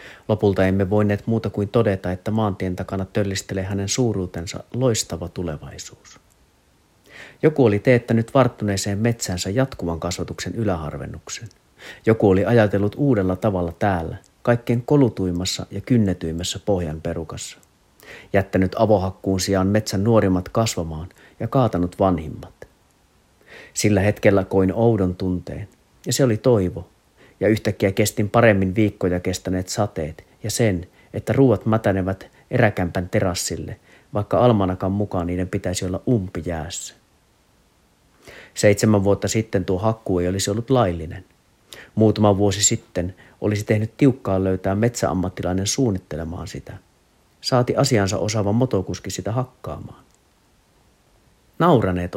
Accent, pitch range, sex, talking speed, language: native, 90-115 Hz, male, 115 wpm, Finnish